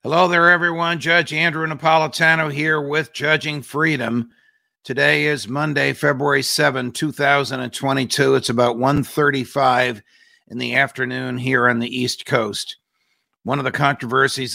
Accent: American